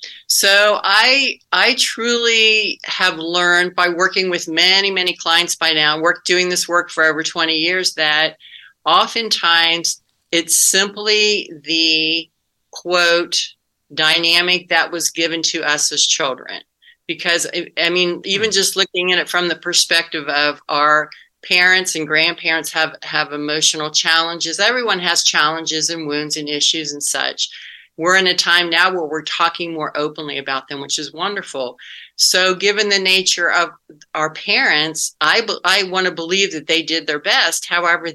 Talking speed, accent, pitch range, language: 155 wpm, American, 155-180 Hz, English